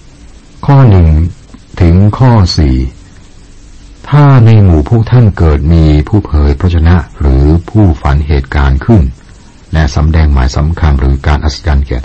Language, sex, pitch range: Thai, male, 70-85 Hz